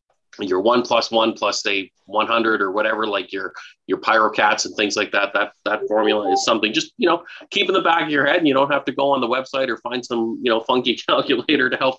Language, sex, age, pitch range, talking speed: English, male, 30-49, 110-150 Hz, 255 wpm